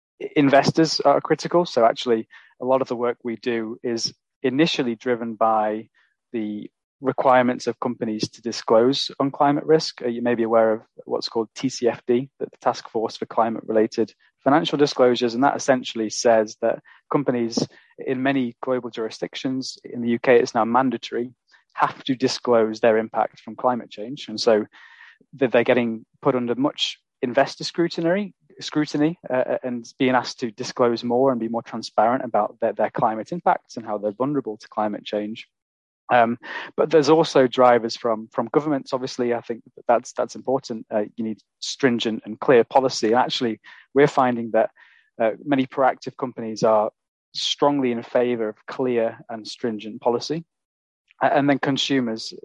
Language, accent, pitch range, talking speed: English, British, 115-135 Hz, 160 wpm